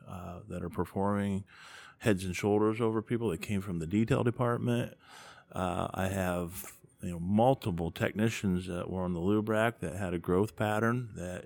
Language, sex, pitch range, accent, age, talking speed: English, male, 90-105 Hz, American, 50-69, 175 wpm